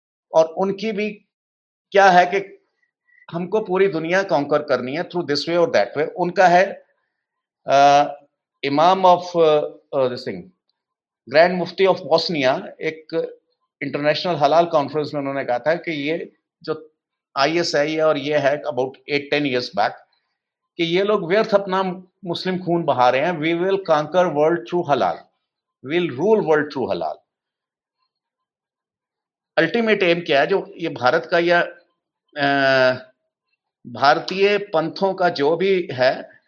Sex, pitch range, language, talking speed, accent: male, 150-195 Hz, English, 120 wpm, Indian